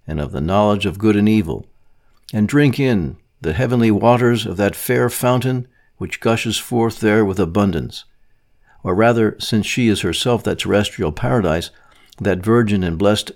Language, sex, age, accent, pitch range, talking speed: English, male, 60-79, American, 100-120 Hz, 165 wpm